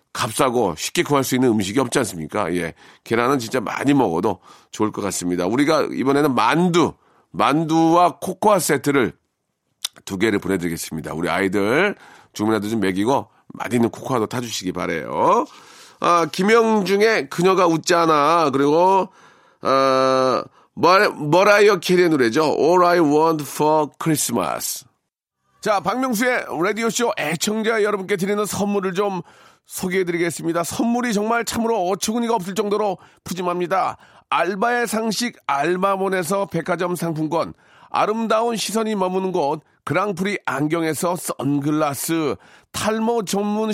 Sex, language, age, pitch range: male, Korean, 40-59, 150-205 Hz